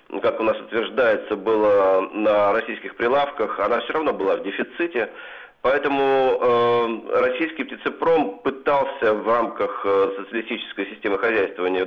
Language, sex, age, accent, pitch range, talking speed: Russian, male, 40-59, native, 110-175 Hz, 120 wpm